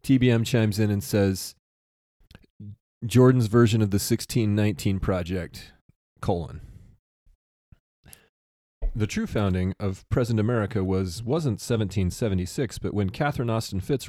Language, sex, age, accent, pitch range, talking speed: English, male, 30-49, American, 90-115 Hz, 110 wpm